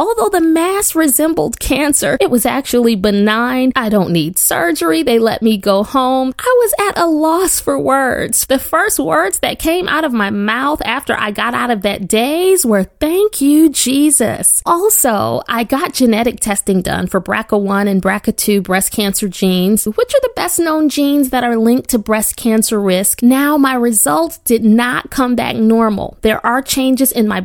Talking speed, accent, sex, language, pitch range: 185 wpm, American, female, English, 210-295 Hz